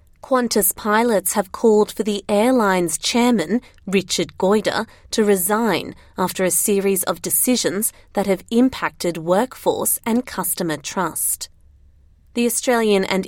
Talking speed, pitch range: 120 wpm, 185-220 Hz